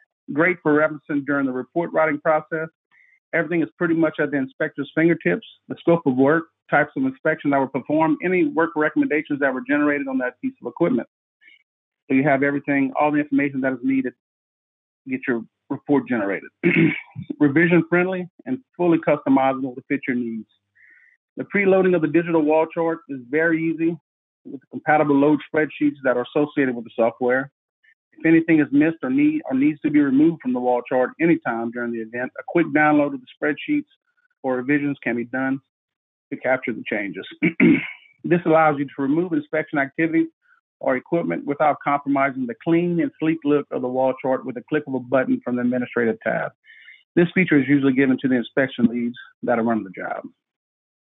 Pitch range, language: 135-165 Hz, English